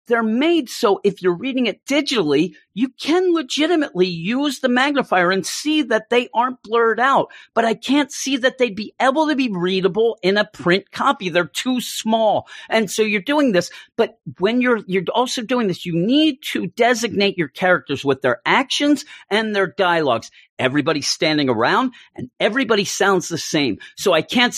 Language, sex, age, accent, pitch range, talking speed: English, male, 40-59, American, 180-245 Hz, 180 wpm